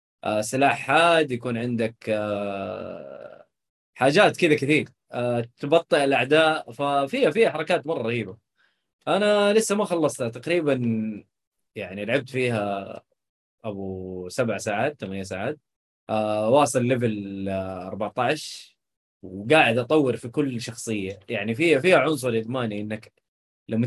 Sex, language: male, Arabic